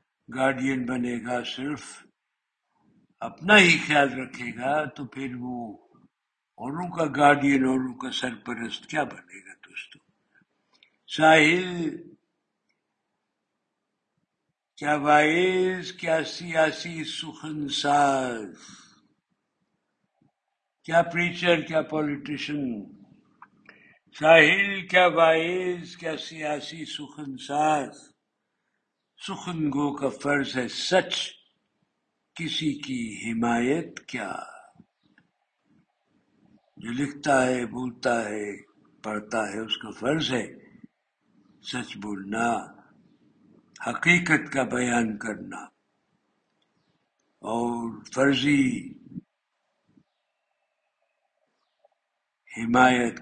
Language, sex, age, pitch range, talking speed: Urdu, male, 60-79, 125-160 Hz, 75 wpm